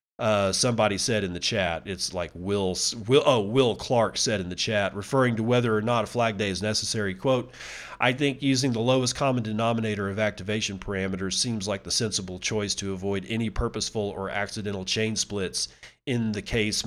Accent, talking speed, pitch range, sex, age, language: American, 190 wpm, 100-125 Hz, male, 40-59, English